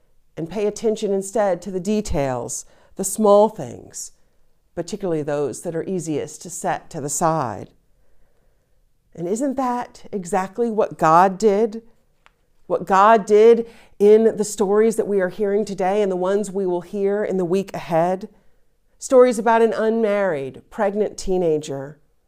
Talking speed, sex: 145 wpm, female